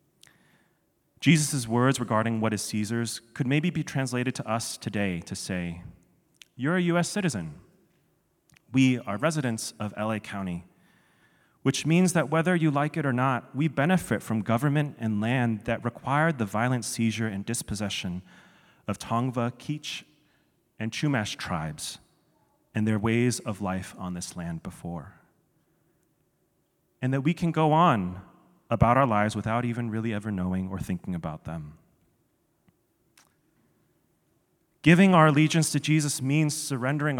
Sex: male